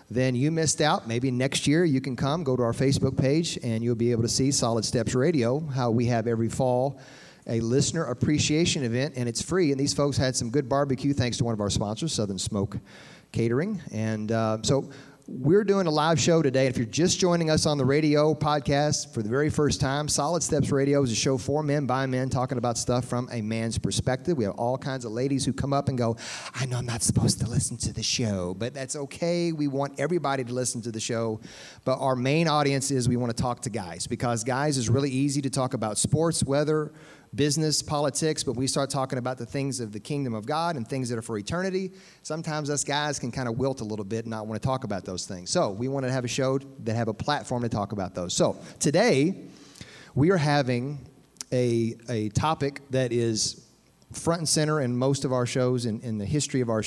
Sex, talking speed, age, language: male, 235 wpm, 40-59, English